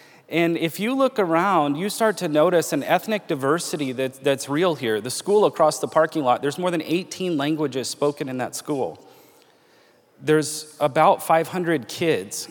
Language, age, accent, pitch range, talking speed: English, 30-49, American, 145-175 Hz, 165 wpm